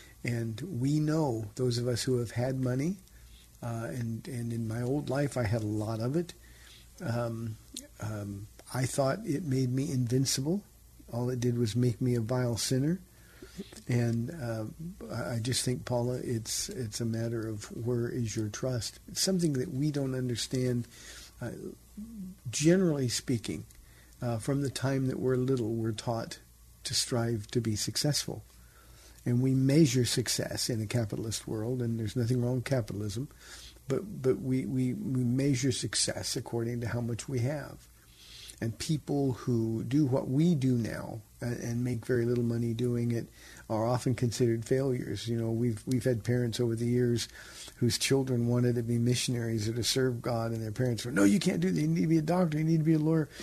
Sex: male